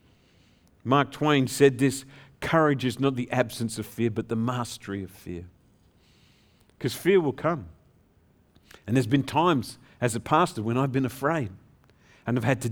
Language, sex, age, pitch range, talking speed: English, male, 50-69, 110-140 Hz, 165 wpm